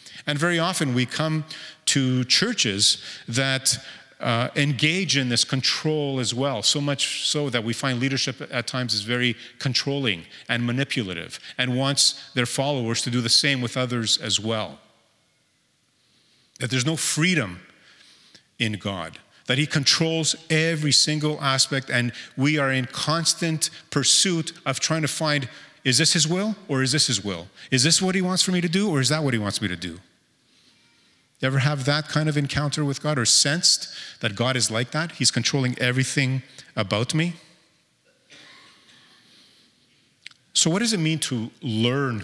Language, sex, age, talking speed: English, male, 40-59, 165 wpm